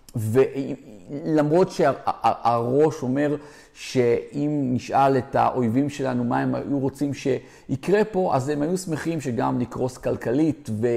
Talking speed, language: 125 wpm, Hebrew